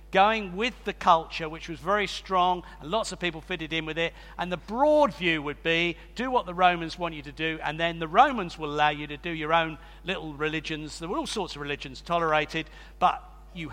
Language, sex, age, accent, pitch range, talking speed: English, male, 50-69, British, 160-200 Hz, 225 wpm